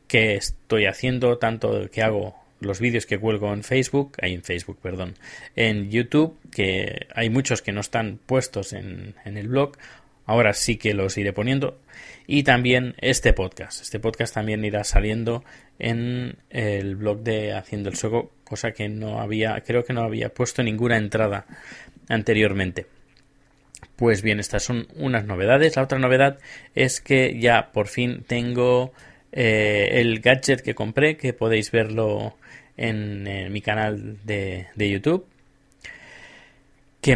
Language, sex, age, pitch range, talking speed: Spanish, male, 20-39, 105-125 Hz, 150 wpm